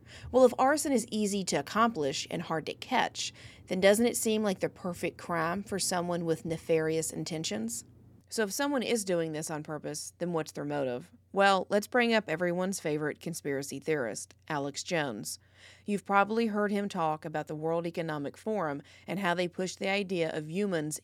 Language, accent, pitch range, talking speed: English, American, 150-195 Hz, 185 wpm